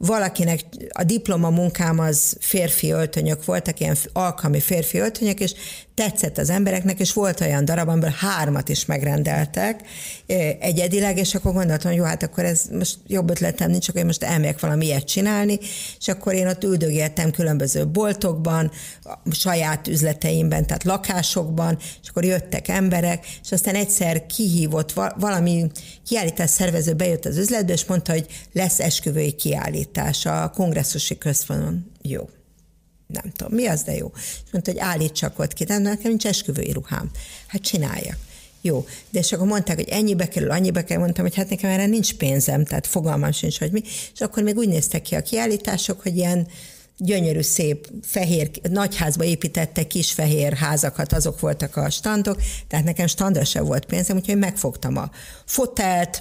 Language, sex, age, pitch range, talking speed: Hungarian, female, 50-69, 160-195 Hz, 160 wpm